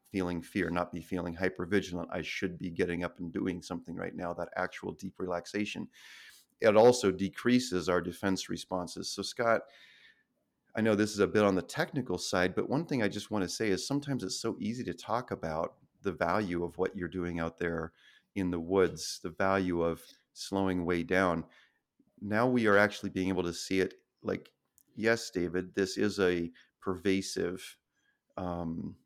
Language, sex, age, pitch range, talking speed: English, male, 40-59, 90-105 Hz, 180 wpm